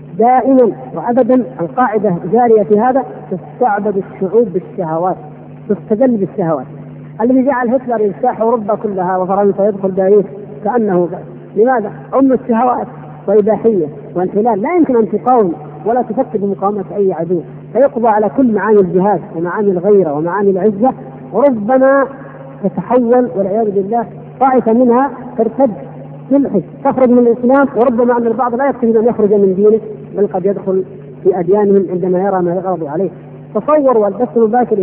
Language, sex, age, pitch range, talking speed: Arabic, female, 40-59, 180-235 Hz, 135 wpm